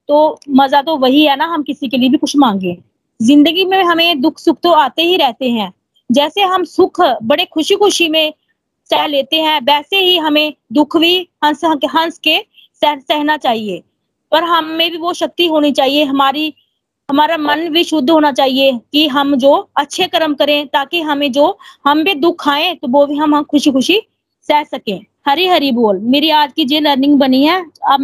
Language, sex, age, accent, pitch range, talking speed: Hindi, female, 20-39, native, 290-370 Hz, 195 wpm